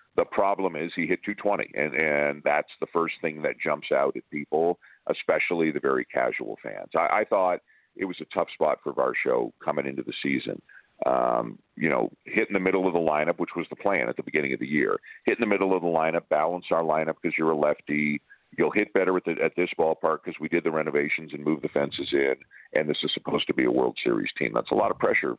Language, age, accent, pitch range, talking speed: English, 50-69, American, 75-125 Hz, 245 wpm